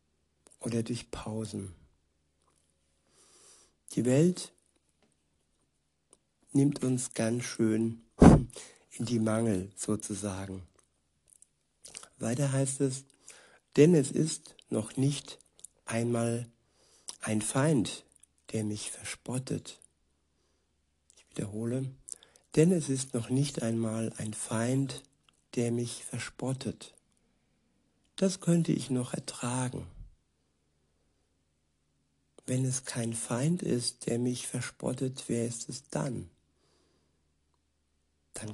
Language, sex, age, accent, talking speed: German, male, 60-79, German, 90 wpm